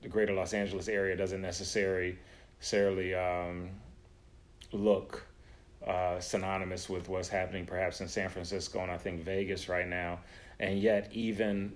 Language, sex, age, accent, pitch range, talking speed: English, male, 30-49, American, 90-100 Hz, 145 wpm